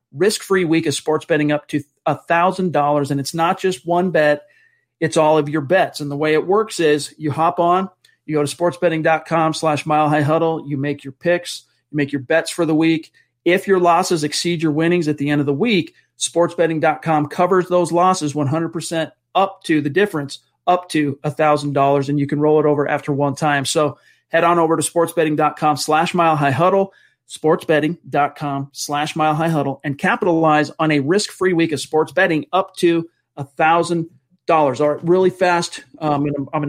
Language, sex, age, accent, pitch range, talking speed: English, male, 40-59, American, 150-170 Hz, 185 wpm